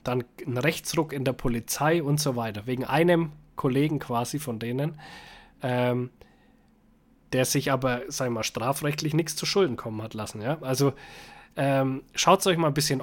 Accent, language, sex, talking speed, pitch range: German, German, male, 175 wpm, 120-140 Hz